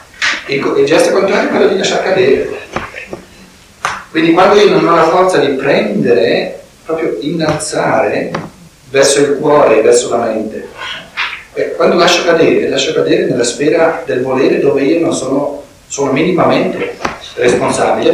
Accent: native